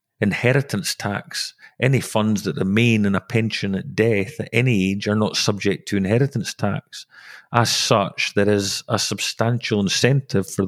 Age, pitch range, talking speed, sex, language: 40-59, 100-115 Hz, 155 wpm, male, English